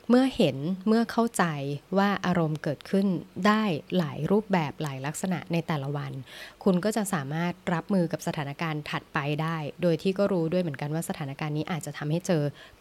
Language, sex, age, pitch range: Thai, female, 20-39, 150-195 Hz